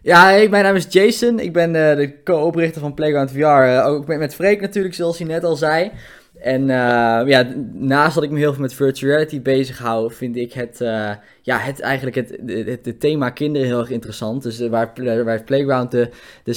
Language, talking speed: Dutch, 215 wpm